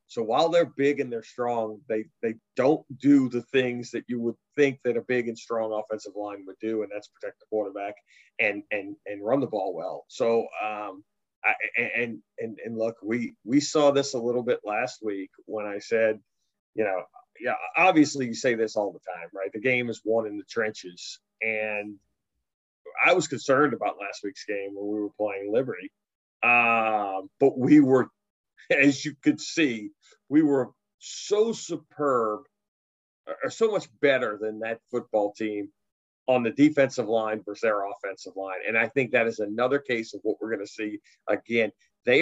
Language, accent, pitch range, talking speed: English, American, 105-130 Hz, 185 wpm